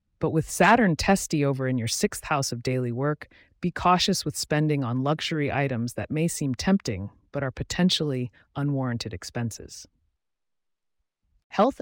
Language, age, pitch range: English, 30-49, 120-160 Hz